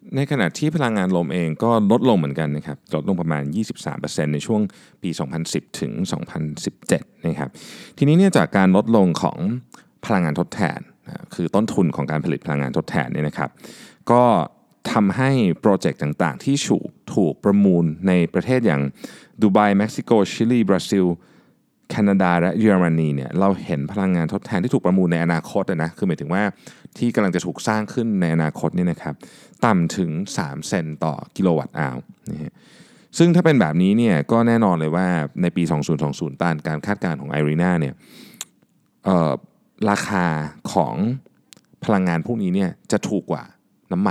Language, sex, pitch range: Thai, male, 80-115 Hz